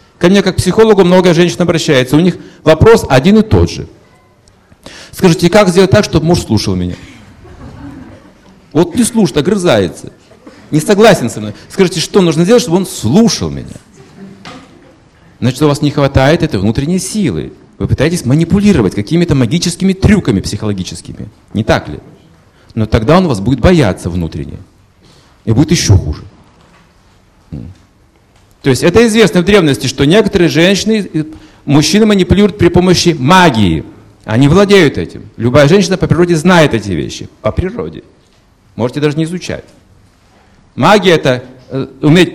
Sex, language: male, Russian